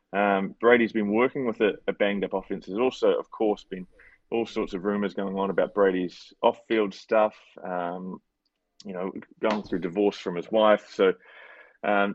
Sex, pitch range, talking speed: male, 95-110 Hz, 175 wpm